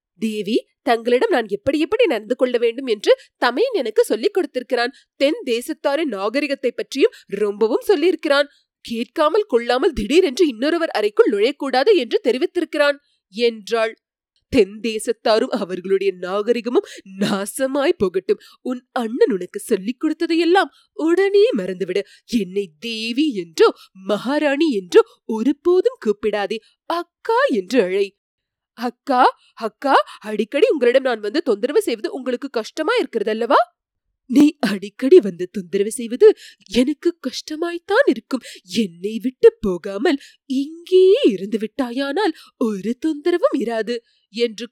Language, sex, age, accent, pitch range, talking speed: Tamil, female, 30-49, native, 230-370 Hz, 105 wpm